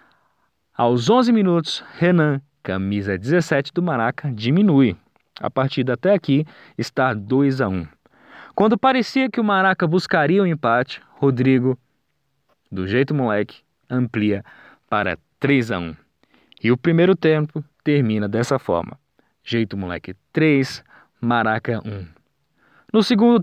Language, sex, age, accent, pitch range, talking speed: Portuguese, male, 20-39, Brazilian, 115-170 Hz, 125 wpm